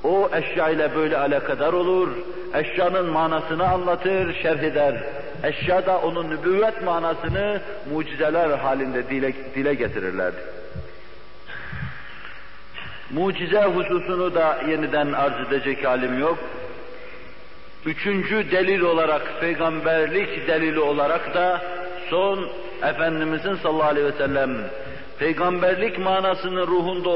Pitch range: 150-180 Hz